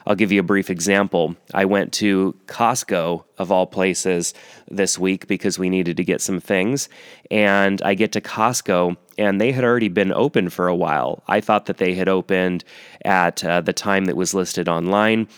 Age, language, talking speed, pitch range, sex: 30-49, English, 195 wpm, 90-100 Hz, male